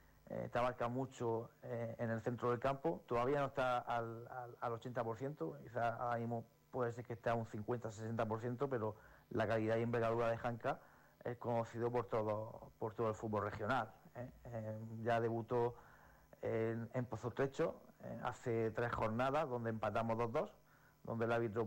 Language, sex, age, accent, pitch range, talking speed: Spanish, male, 40-59, Spanish, 115-125 Hz, 170 wpm